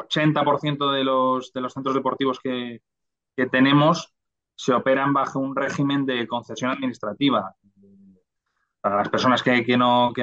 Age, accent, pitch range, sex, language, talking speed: 20-39, Spanish, 115-135 Hz, male, Spanish, 145 wpm